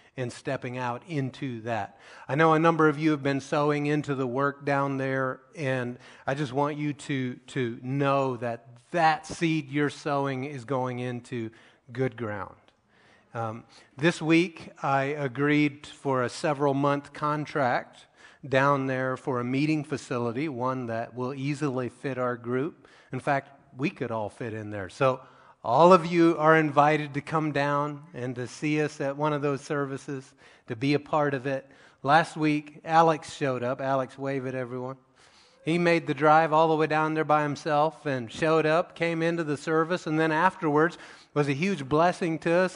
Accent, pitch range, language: American, 130-155 Hz, English